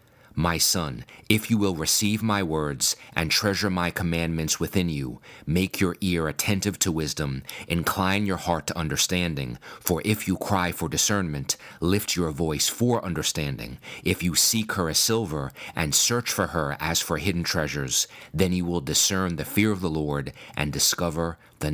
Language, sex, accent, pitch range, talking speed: English, male, American, 80-95 Hz, 170 wpm